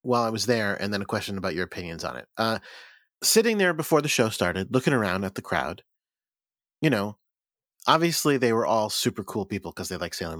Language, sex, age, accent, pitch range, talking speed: English, male, 30-49, American, 110-150 Hz, 220 wpm